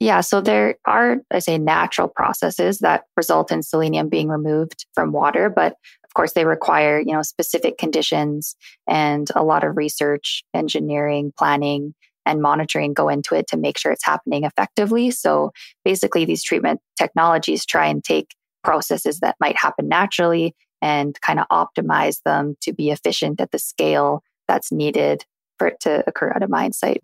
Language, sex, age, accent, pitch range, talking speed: English, female, 20-39, American, 145-180 Hz, 170 wpm